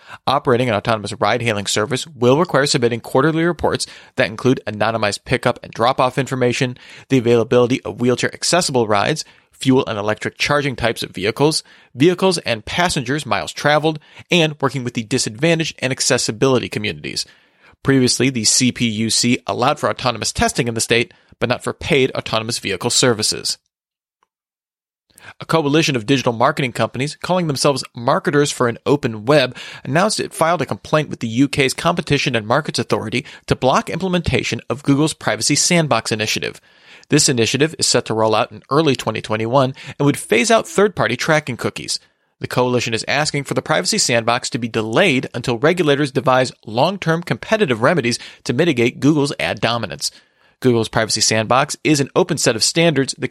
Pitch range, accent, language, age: 120-150 Hz, American, English, 30-49